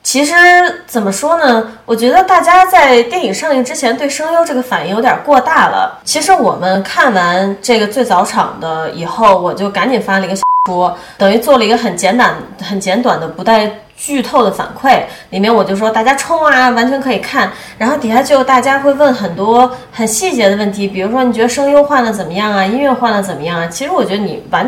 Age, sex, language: 20-39, female, Chinese